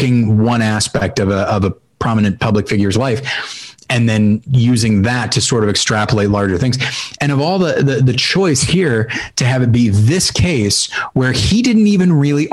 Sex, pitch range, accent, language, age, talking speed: male, 110-145 Hz, American, English, 30-49, 180 wpm